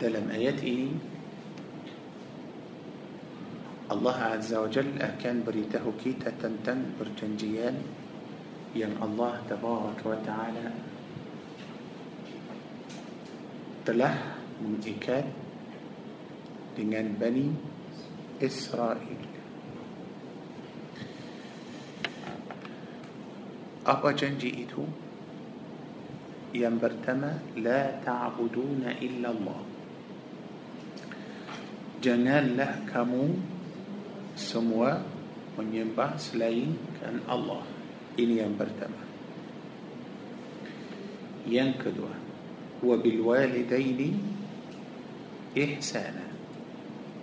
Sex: male